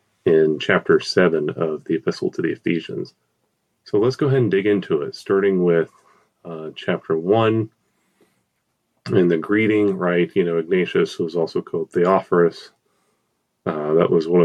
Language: English